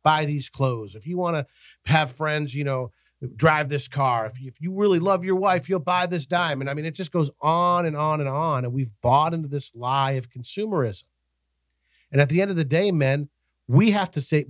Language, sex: English, male